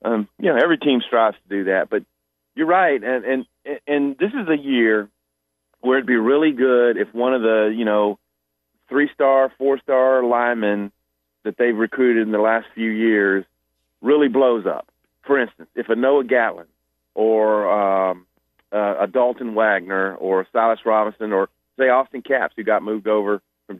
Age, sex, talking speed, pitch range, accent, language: 40-59, male, 170 wpm, 95-125 Hz, American, English